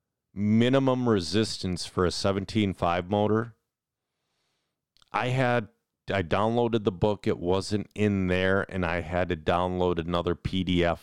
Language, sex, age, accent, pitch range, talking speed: English, male, 40-59, American, 95-135 Hz, 125 wpm